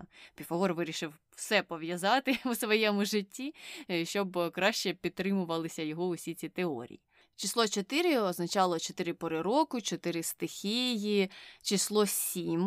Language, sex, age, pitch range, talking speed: Ukrainian, female, 20-39, 165-205 Hz, 115 wpm